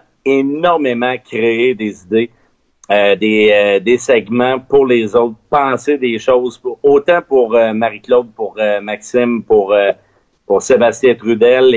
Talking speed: 150 wpm